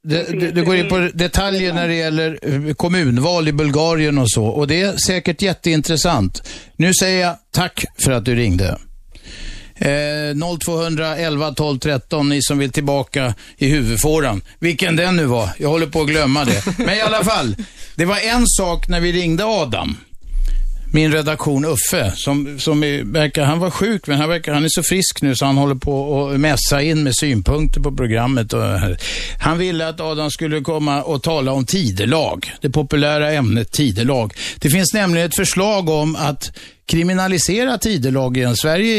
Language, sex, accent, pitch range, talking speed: Swedish, male, native, 125-170 Hz, 175 wpm